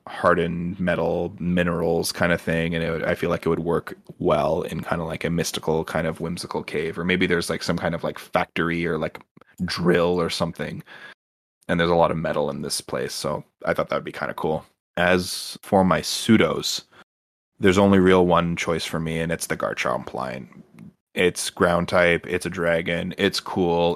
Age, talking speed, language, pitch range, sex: 20-39, 200 wpm, English, 85-90 Hz, male